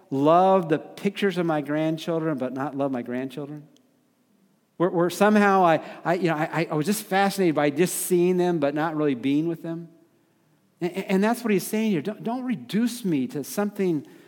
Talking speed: 195 wpm